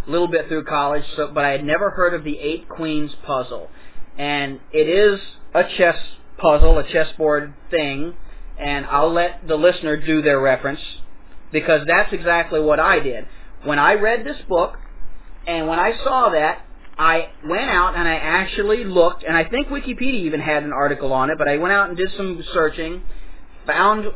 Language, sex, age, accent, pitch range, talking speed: English, male, 40-59, American, 150-185 Hz, 185 wpm